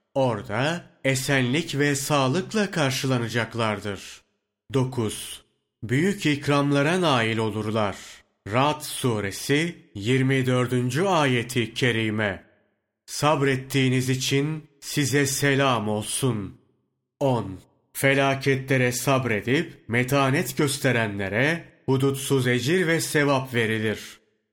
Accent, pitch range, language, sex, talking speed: native, 120-145 Hz, Turkish, male, 75 wpm